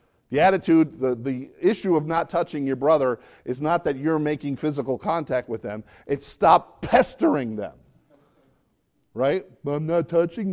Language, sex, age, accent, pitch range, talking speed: English, male, 50-69, American, 125-175 Hz, 155 wpm